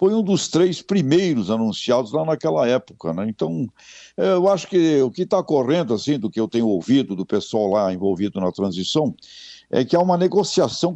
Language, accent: Portuguese, Brazilian